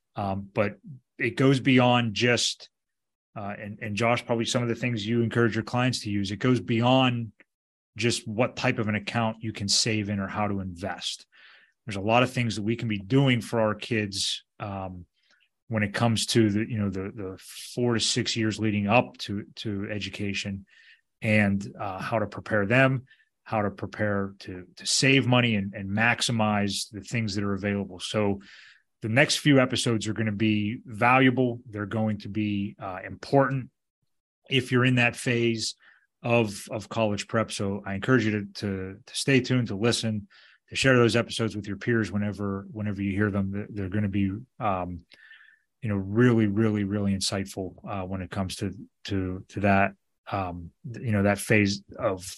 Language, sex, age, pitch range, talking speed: English, male, 30-49, 100-120 Hz, 190 wpm